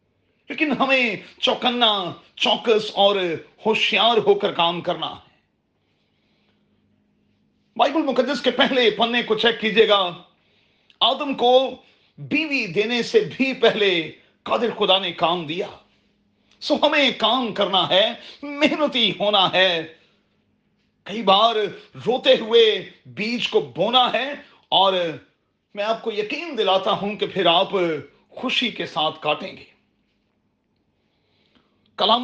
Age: 40-59